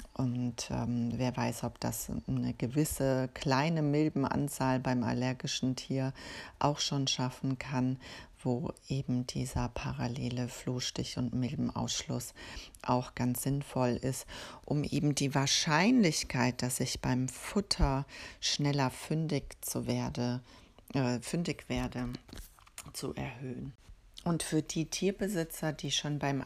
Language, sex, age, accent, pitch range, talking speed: German, female, 40-59, German, 130-160 Hz, 120 wpm